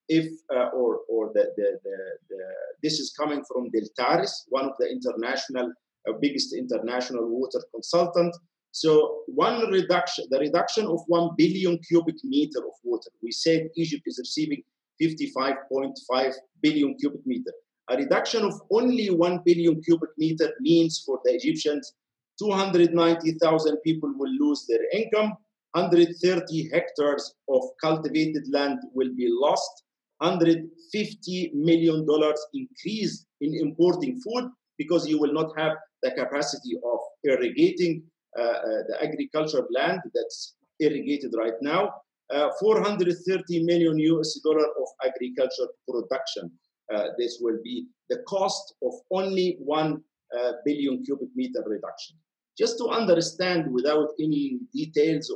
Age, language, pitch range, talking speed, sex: 50-69, English, 150-250 Hz, 130 wpm, male